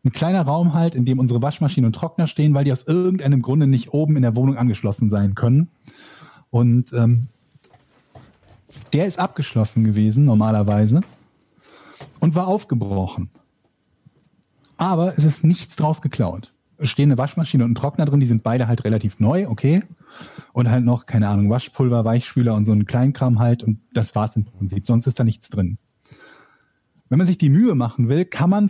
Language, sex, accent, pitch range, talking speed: German, male, German, 120-155 Hz, 180 wpm